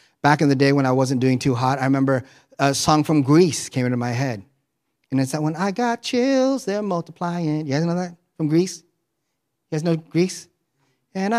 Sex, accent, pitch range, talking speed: male, American, 140-205 Hz, 210 wpm